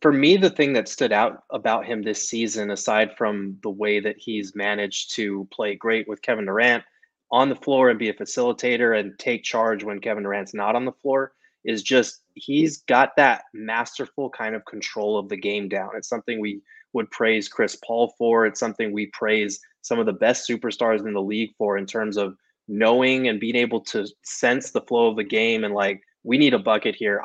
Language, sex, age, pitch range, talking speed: English, male, 20-39, 105-120 Hz, 210 wpm